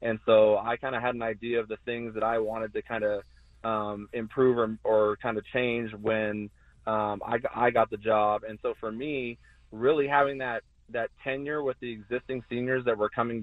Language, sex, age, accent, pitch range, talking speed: English, male, 30-49, American, 110-125 Hz, 200 wpm